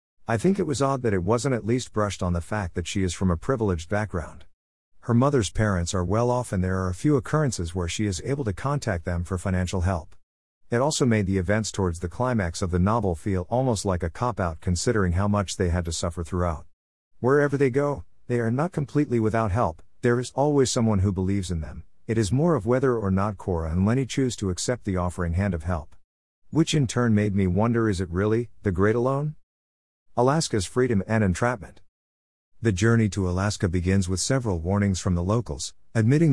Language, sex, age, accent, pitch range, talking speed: English, male, 50-69, American, 90-120 Hz, 215 wpm